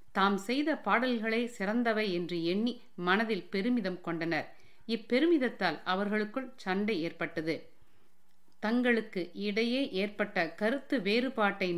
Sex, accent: female, native